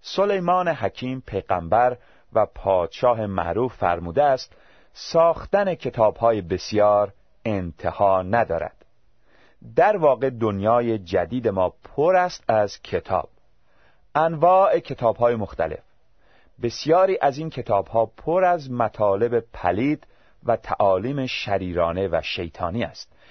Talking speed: 100 wpm